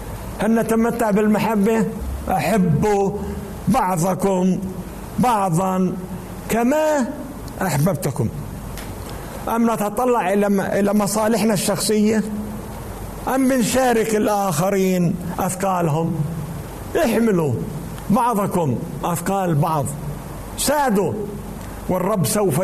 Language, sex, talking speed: Arabic, male, 65 wpm